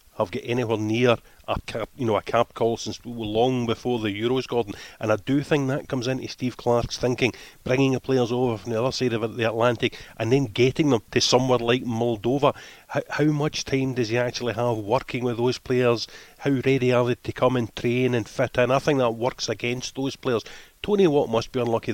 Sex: male